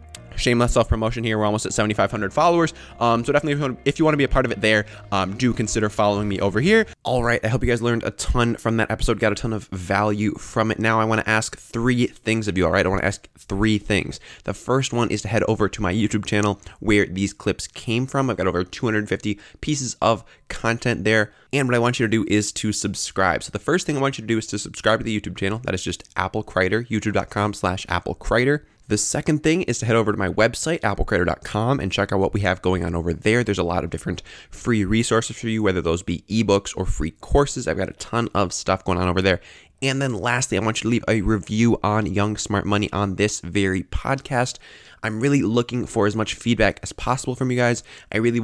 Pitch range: 100-120 Hz